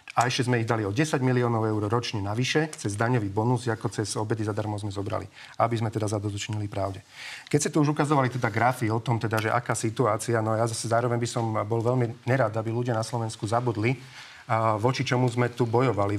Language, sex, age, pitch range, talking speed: Slovak, male, 40-59, 115-130 Hz, 215 wpm